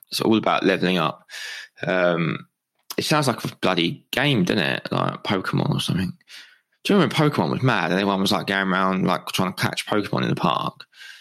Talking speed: 210 wpm